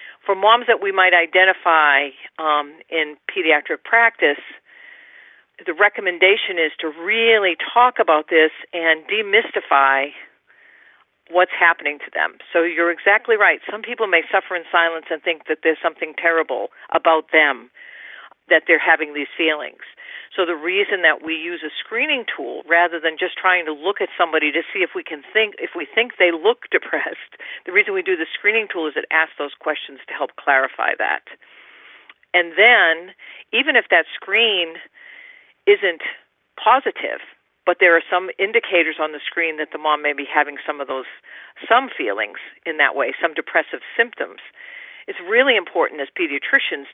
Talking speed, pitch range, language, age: 165 wpm, 160-230 Hz, English, 50-69